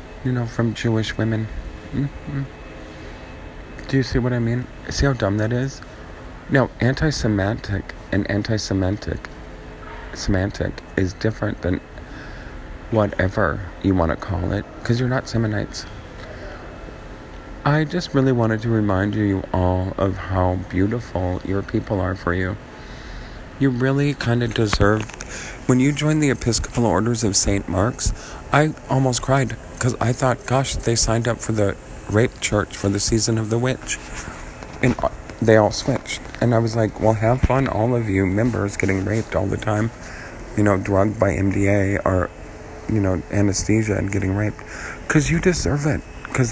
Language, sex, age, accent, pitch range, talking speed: English, male, 40-59, American, 95-120 Hz, 155 wpm